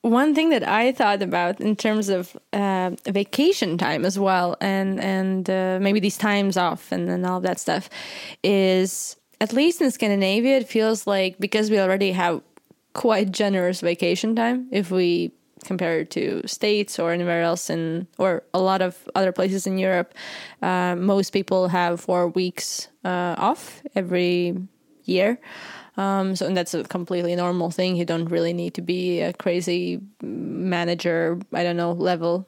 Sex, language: female, English